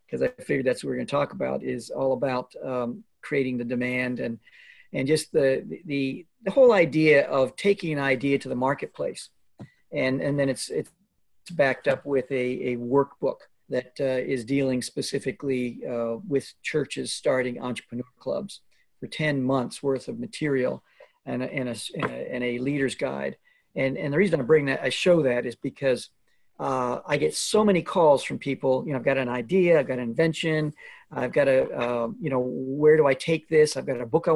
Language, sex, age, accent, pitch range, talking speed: English, male, 50-69, American, 130-155 Hz, 200 wpm